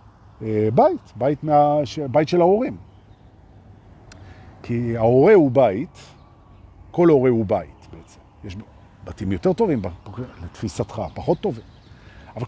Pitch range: 105-165 Hz